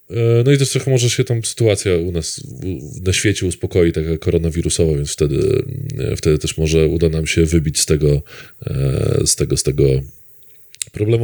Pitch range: 90-115 Hz